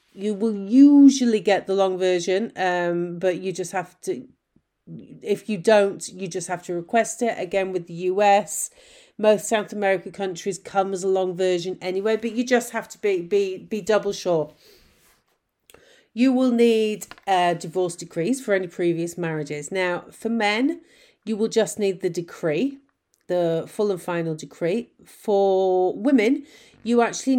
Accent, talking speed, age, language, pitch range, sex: British, 160 wpm, 40-59, English, 175-225 Hz, female